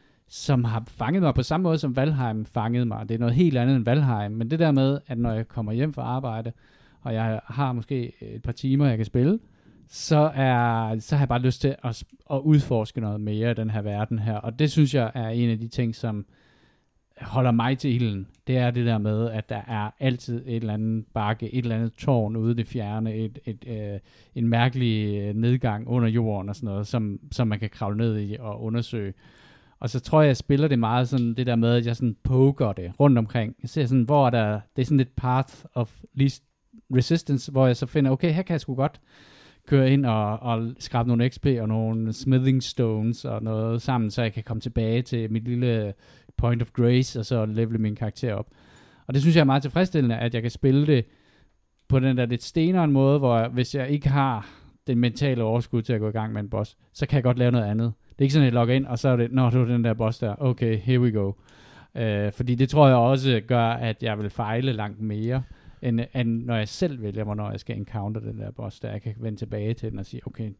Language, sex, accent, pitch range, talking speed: Danish, male, native, 110-130 Hz, 240 wpm